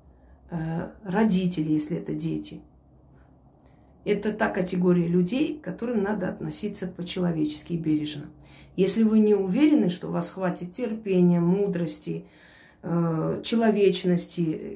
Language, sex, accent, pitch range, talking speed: Russian, female, native, 170-215 Hz, 100 wpm